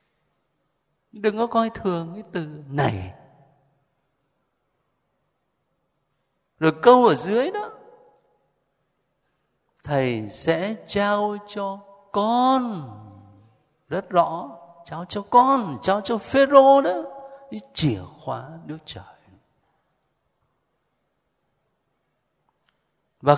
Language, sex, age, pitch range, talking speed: Vietnamese, male, 60-79, 145-235 Hz, 80 wpm